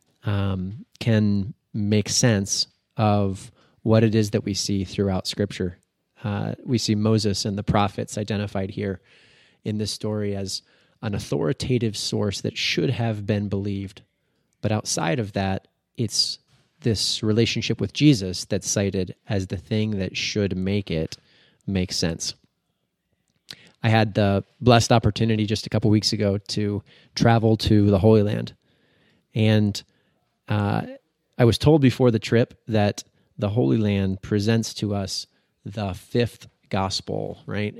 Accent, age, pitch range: American, 30-49, 100-115 Hz